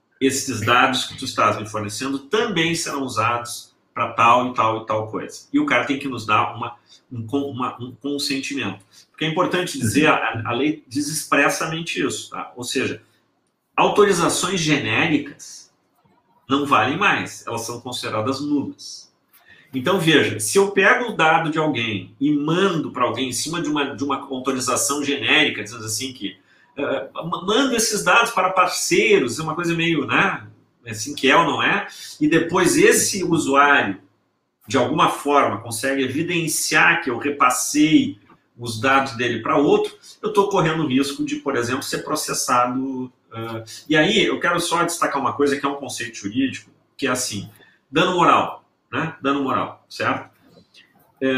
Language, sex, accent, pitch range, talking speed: Portuguese, male, Brazilian, 120-165 Hz, 165 wpm